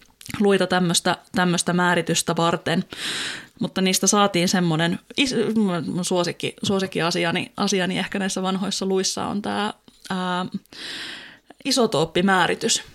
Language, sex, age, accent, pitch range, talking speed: Finnish, female, 20-39, native, 170-200 Hz, 85 wpm